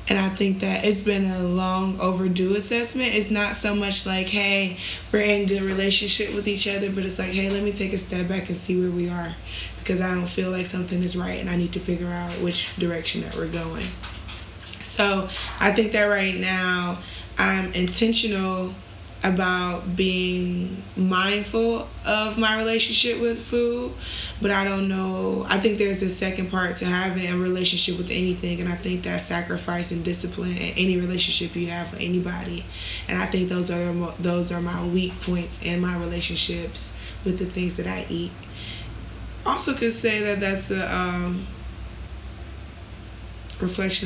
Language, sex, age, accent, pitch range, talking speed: English, female, 20-39, American, 175-200 Hz, 175 wpm